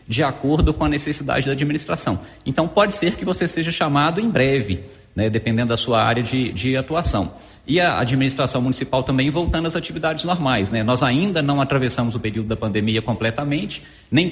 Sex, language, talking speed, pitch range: male, Portuguese, 185 wpm, 110-150 Hz